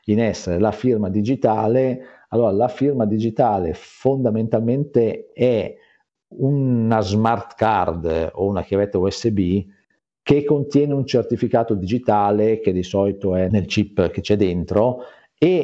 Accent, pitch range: native, 90-115 Hz